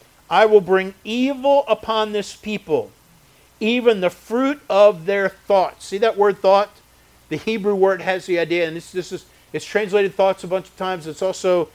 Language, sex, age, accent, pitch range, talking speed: English, male, 50-69, American, 155-210 Hz, 185 wpm